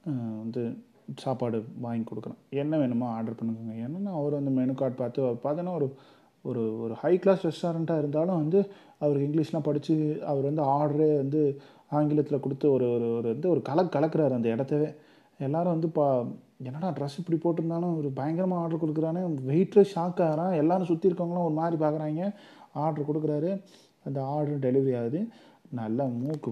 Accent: native